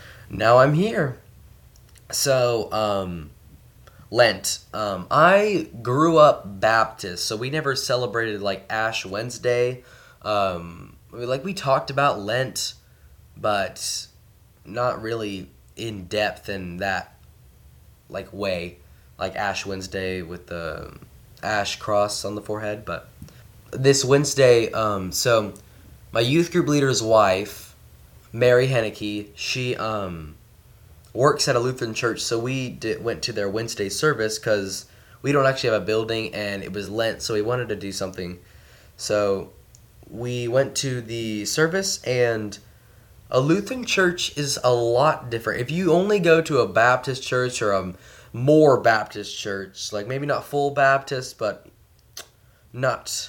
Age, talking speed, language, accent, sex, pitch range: 20-39, 135 wpm, English, American, male, 100-130 Hz